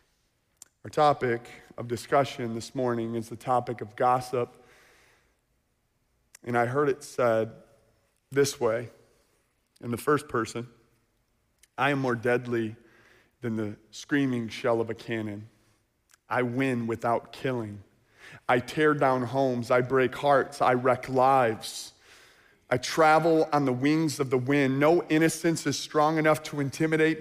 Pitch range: 115-150 Hz